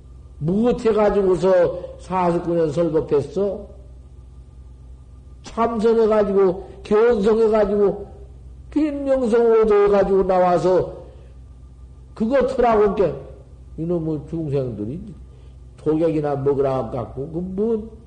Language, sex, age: Korean, male, 50-69